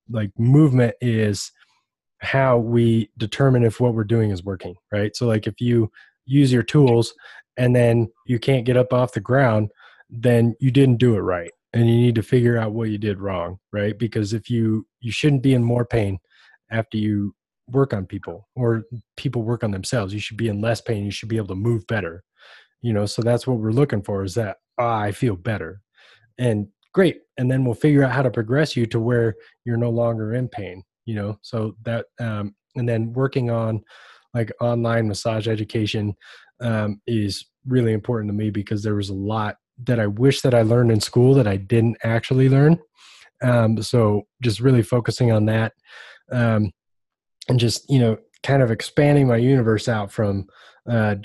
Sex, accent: male, American